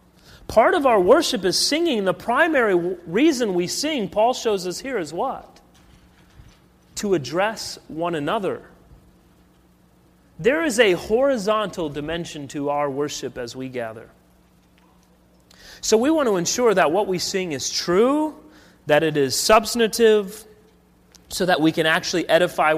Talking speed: 140 wpm